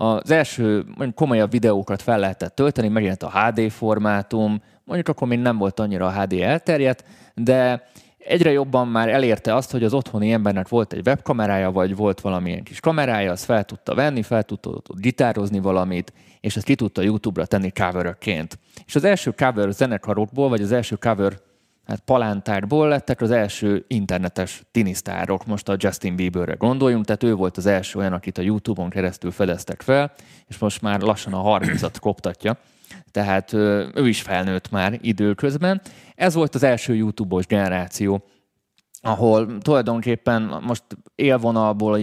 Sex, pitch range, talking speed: male, 100-120 Hz, 155 wpm